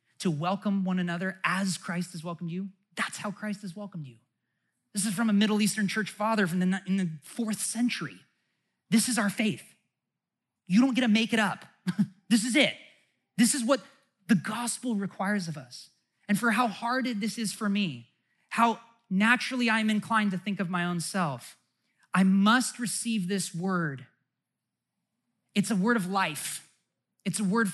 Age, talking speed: 30-49, 175 wpm